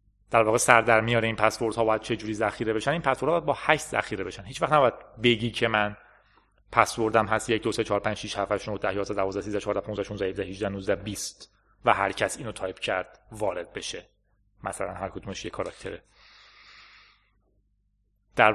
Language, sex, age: Persian, male, 30-49